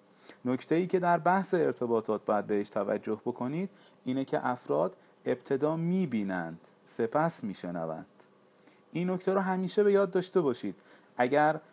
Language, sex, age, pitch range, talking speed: Persian, male, 40-59, 125-175 Hz, 145 wpm